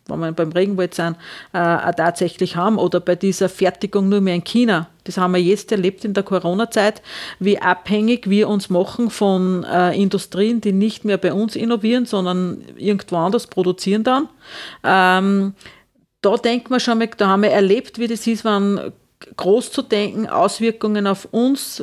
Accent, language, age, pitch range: Austrian, German, 40-59, 190-230 Hz